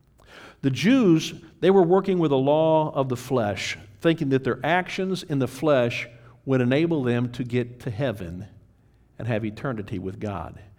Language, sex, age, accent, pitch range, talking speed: English, male, 50-69, American, 105-140 Hz, 165 wpm